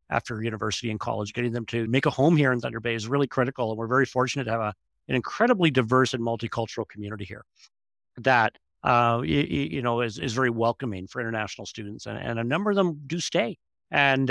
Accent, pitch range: American, 115-150 Hz